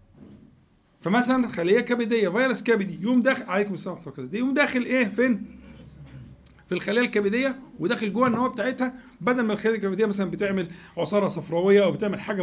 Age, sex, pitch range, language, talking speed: 50-69, male, 170-240 Hz, Arabic, 150 wpm